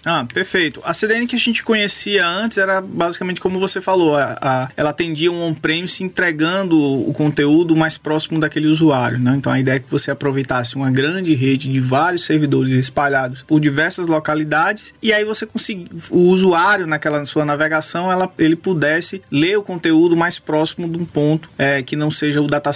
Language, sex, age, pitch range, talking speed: Portuguese, male, 20-39, 145-180 Hz, 185 wpm